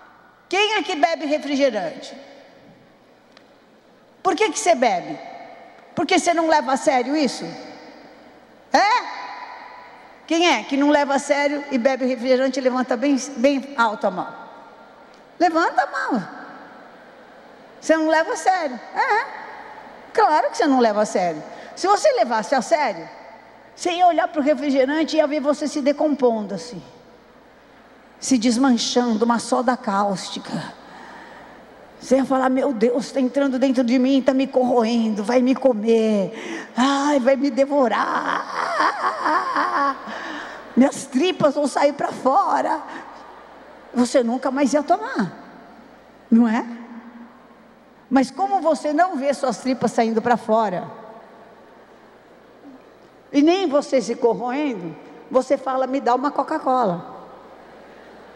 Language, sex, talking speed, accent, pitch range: Portuguese, female, 130 wpm, Brazilian, 245-305 Hz